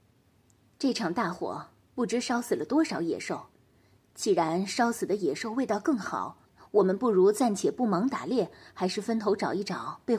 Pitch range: 200-305 Hz